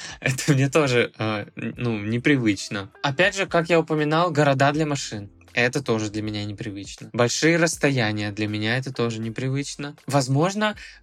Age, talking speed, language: 20-39, 145 wpm, Russian